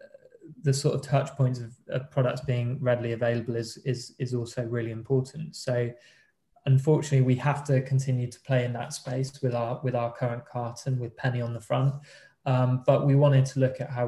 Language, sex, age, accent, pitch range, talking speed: English, male, 20-39, British, 125-135 Hz, 200 wpm